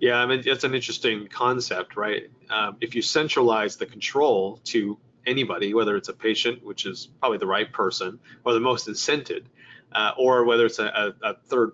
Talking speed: 190 wpm